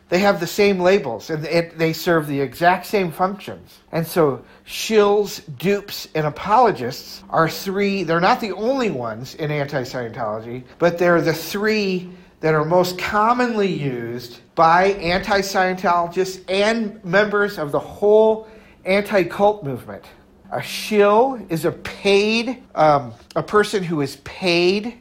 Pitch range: 155-200 Hz